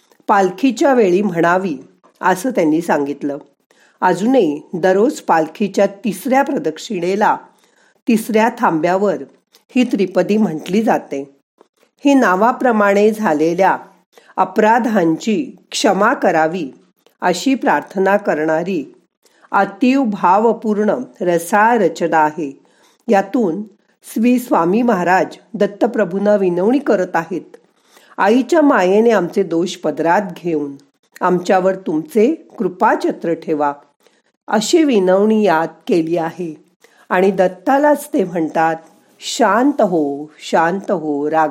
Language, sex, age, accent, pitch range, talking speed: Marathi, female, 50-69, native, 165-230 Hz, 75 wpm